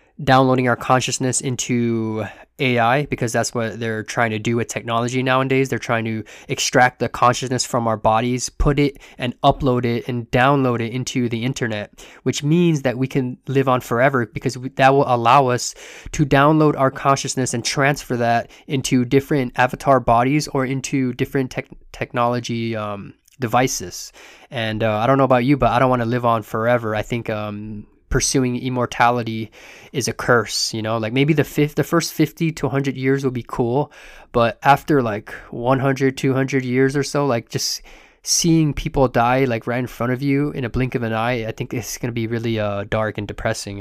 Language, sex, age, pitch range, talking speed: English, male, 20-39, 120-140 Hz, 190 wpm